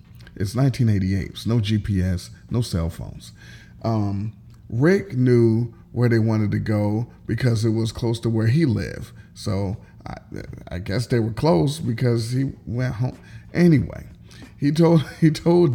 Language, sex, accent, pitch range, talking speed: English, male, American, 110-135 Hz, 150 wpm